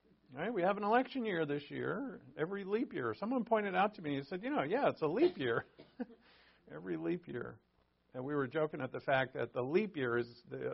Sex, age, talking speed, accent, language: male, 50-69, 230 wpm, American, English